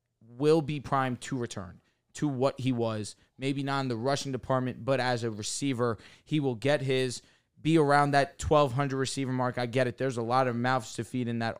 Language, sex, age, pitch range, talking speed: English, male, 20-39, 115-135 Hz, 210 wpm